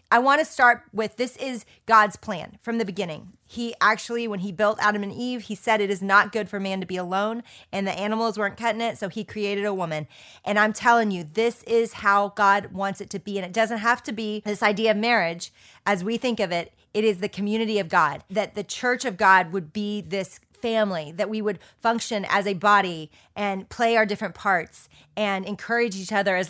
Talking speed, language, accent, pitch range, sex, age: 230 wpm, English, American, 190-230 Hz, female, 30-49